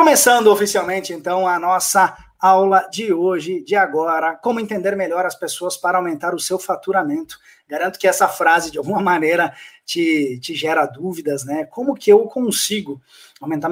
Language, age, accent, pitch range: Portuguese, 20-39, Brazilian, 160-210 Hz